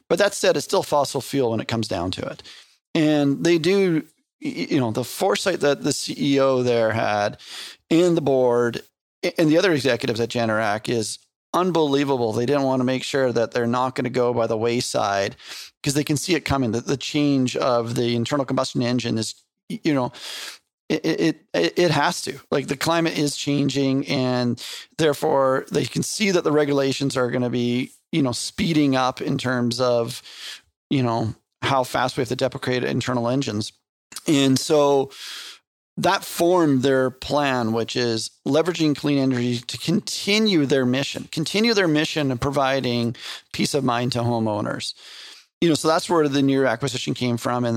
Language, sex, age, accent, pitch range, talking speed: English, male, 30-49, American, 120-145 Hz, 180 wpm